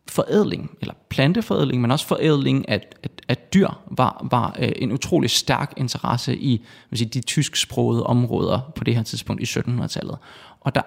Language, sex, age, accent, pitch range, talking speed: Danish, male, 20-39, native, 120-145 Hz, 165 wpm